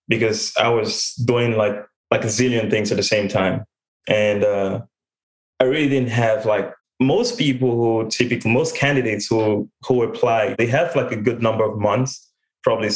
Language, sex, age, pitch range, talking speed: English, male, 20-39, 105-130 Hz, 175 wpm